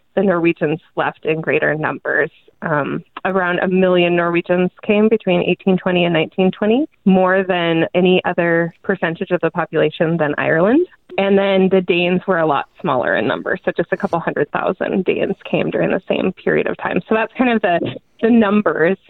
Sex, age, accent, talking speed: female, 20-39, American, 185 wpm